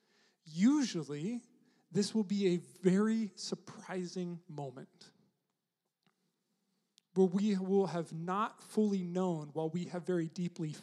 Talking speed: 110 wpm